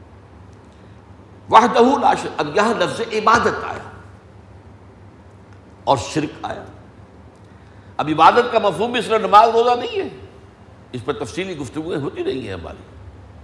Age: 60-79